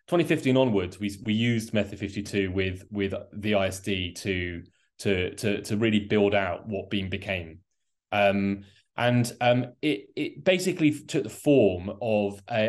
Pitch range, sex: 100-120 Hz, male